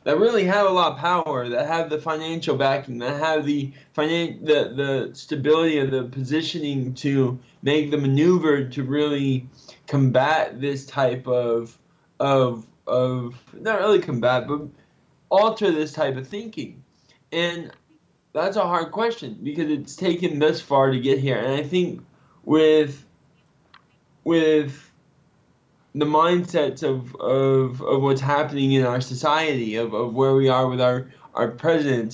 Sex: male